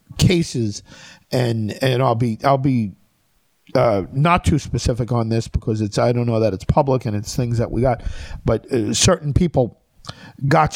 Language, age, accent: English, 50-69, American